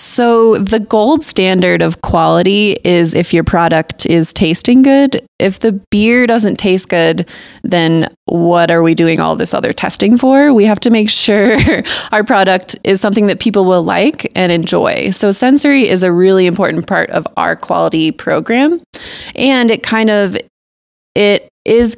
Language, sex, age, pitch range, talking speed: English, female, 20-39, 175-215 Hz, 165 wpm